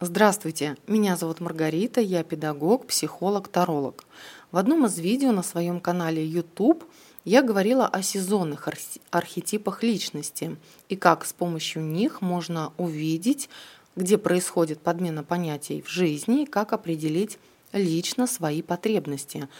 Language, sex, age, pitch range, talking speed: Russian, female, 20-39, 160-205 Hz, 125 wpm